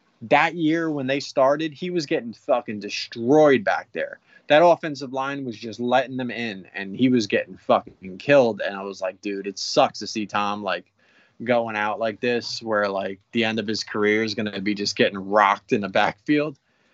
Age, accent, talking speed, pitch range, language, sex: 20-39, American, 205 wpm, 110-145 Hz, English, male